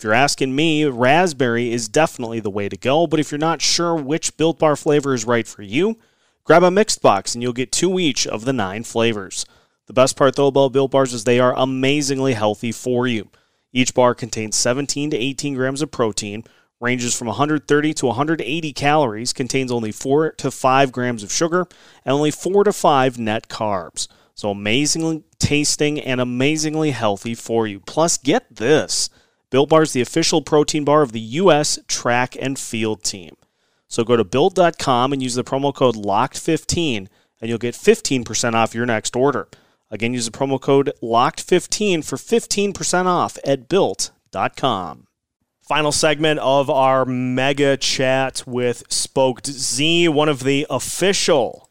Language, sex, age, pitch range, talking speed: English, male, 30-49, 120-150 Hz, 170 wpm